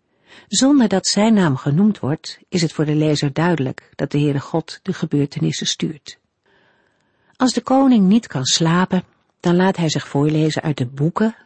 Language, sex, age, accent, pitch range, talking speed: Dutch, female, 50-69, Dutch, 145-190 Hz, 175 wpm